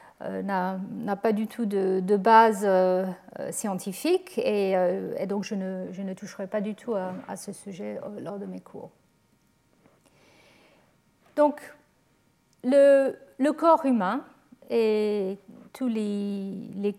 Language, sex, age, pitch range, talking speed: French, female, 50-69, 200-255 Hz, 140 wpm